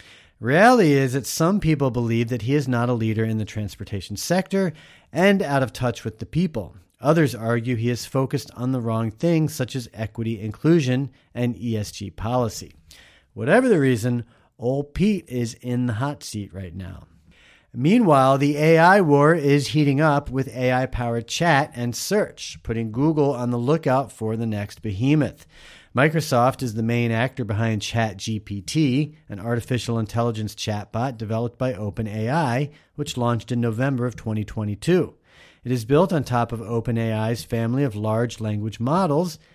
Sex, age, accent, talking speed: male, 40-59, American, 160 wpm